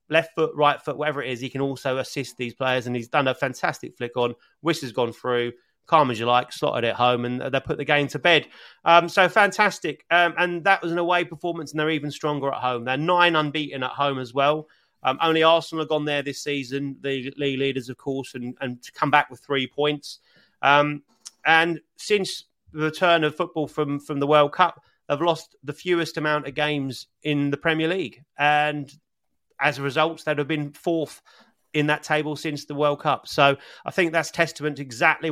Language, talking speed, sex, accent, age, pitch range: English, 215 wpm, male, British, 30-49, 135-160 Hz